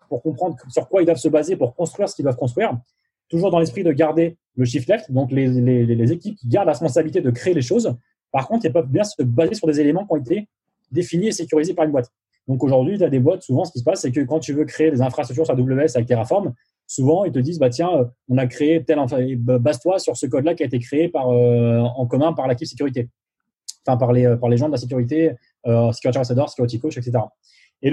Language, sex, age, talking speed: French, male, 20-39, 260 wpm